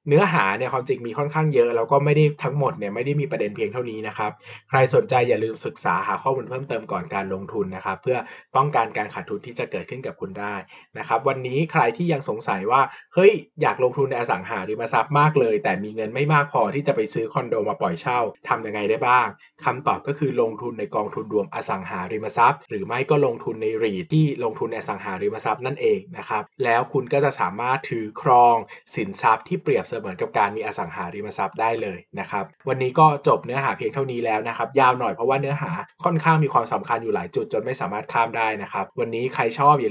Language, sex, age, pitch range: Thai, male, 20-39, 115-160 Hz